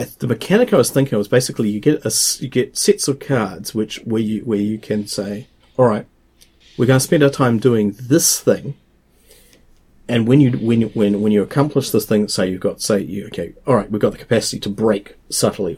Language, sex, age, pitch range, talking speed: English, male, 40-59, 100-125 Hz, 225 wpm